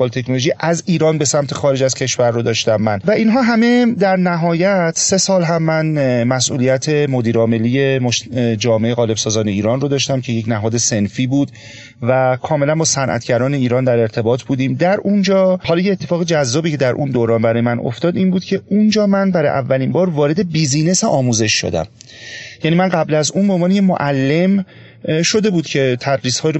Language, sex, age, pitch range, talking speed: Persian, male, 30-49, 120-170 Hz, 170 wpm